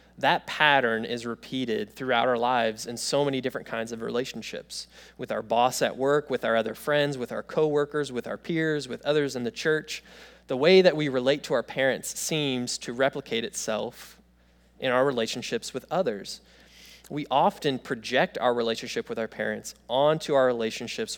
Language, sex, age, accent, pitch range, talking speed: English, male, 20-39, American, 115-135 Hz, 175 wpm